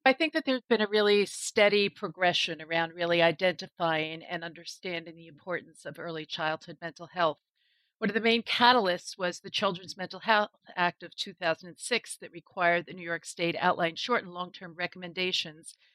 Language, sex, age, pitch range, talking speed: English, female, 50-69, 170-200 Hz, 170 wpm